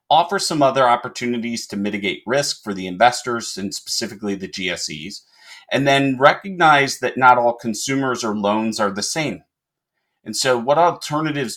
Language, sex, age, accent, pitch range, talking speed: English, male, 40-59, American, 105-140 Hz, 155 wpm